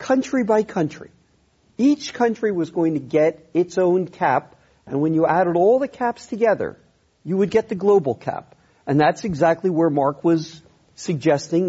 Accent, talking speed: American, 170 wpm